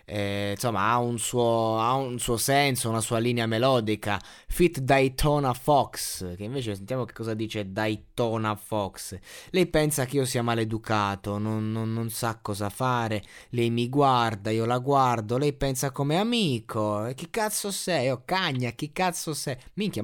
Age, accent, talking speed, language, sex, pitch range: 20-39, native, 165 wpm, Italian, male, 110-145 Hz